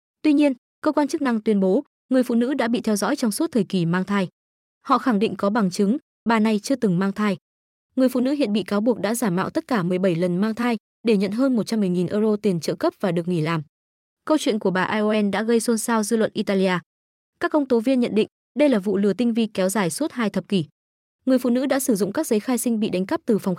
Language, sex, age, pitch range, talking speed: Vietnamese, female, 20-39, 200-245 Hz, 270 wpm